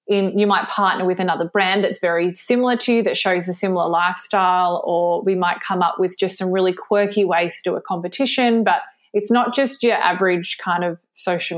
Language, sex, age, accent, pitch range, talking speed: English, female, 20-39, Australian, 180-200 Hz, 210 wpm